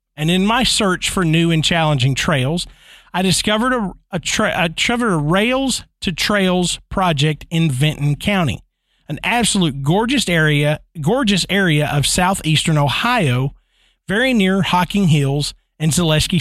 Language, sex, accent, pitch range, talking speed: English, male, American, 155-210 Hz, 135 wpm